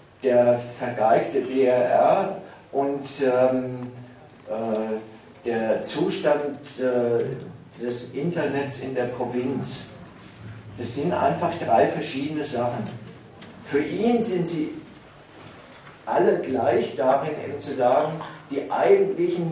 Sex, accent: male, German